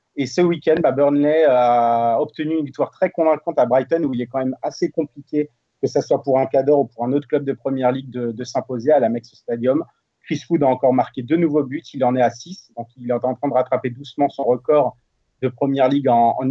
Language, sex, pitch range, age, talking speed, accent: French, male, 125-150 Hz, 30-49, 250 wpm, French